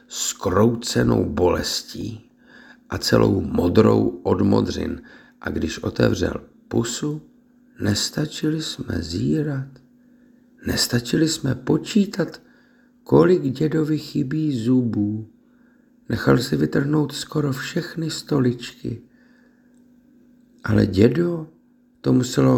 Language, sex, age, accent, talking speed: Czech, male, 50-69, native, 80 wpm